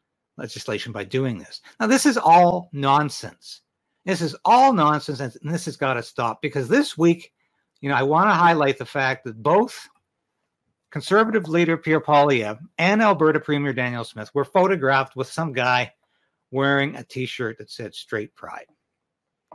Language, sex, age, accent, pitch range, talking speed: English, male, 60-79, American, 130-180 Hz, 165 wpm